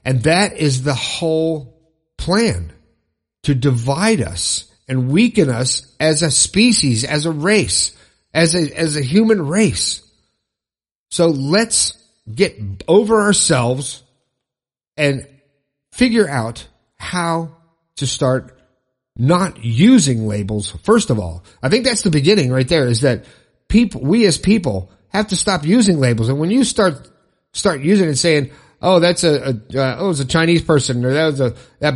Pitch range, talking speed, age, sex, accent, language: 125-180 Hz, 155 wpm, 50-69, male, American, English